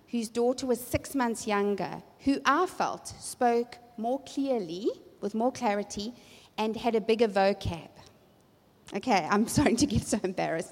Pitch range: 205-275 Hz